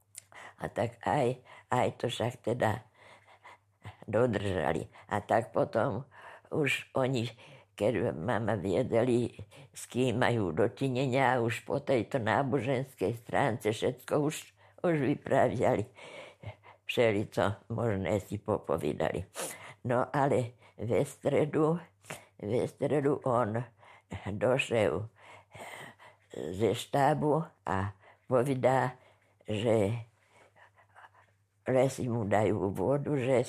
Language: Slovak